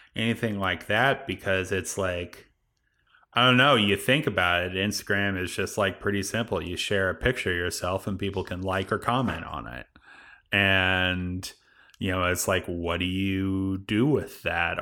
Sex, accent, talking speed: male, American, 180 wpm